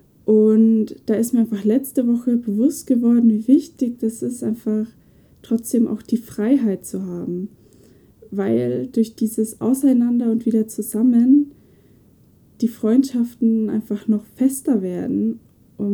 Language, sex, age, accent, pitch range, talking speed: German, female, 20-39, German, 205-235 Hz, 130 wpm